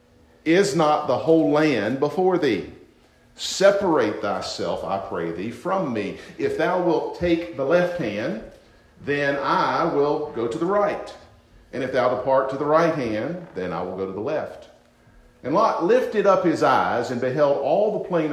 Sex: male